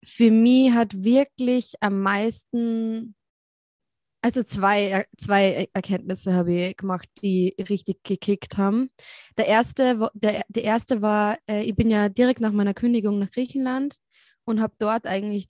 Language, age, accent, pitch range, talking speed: German, 20-39, German, 195-240 Hz, 140 wpm